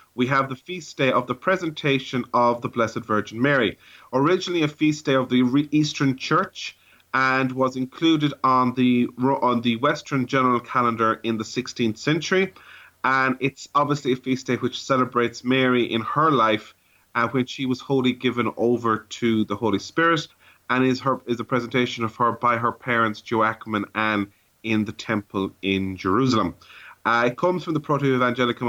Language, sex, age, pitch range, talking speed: English, male, 30-49, 110-130 Hz, 175 wpm